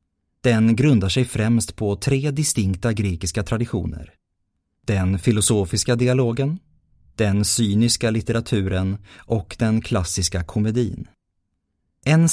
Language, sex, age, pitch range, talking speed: Swedish, male, 30-49, 95-125 Hz, 95 wpm